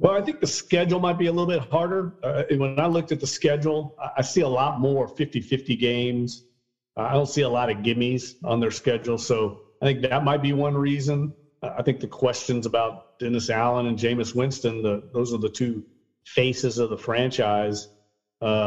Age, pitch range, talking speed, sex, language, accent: 40-59, 115-140 Hz, 205 wpm, male, English, American